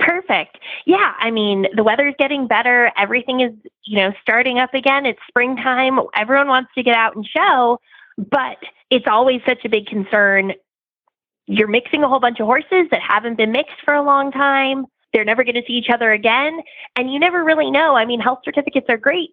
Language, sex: English, female